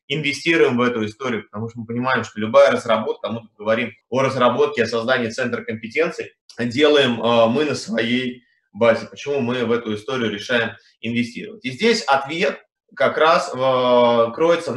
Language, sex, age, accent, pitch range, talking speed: Russian, male, 20-39, native, 110-140 Hz, 160 wpm